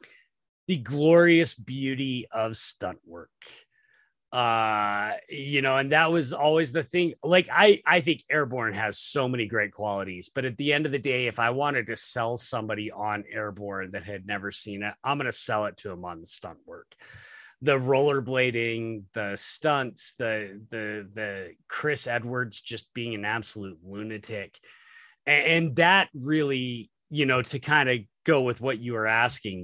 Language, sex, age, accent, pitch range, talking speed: English, male, 30-49, American, 110-145 Hz, 170 wpm